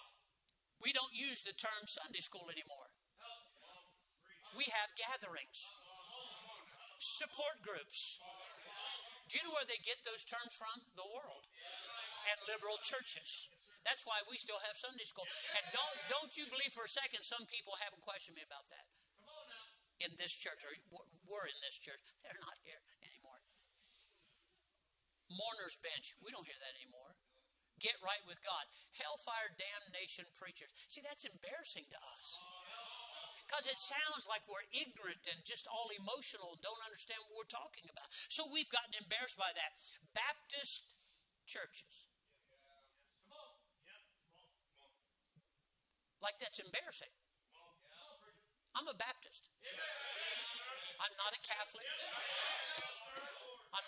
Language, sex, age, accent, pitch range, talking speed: English, male, 60-79, American, 185-250 Hz, 130 wpm